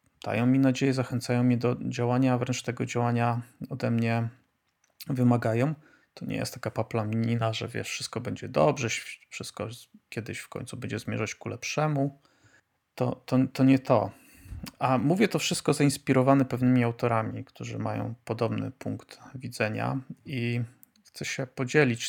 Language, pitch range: Polish, 115-130 Hz